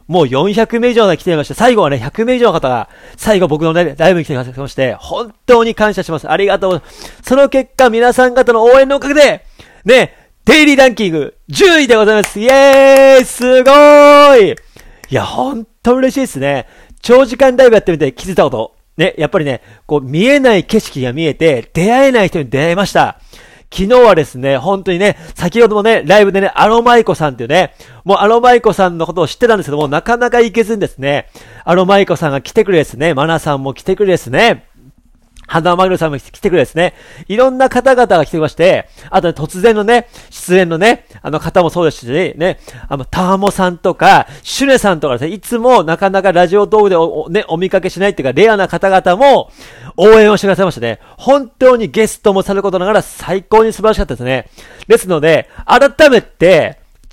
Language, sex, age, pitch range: Japanese, male, 40-59, 165-240 Hz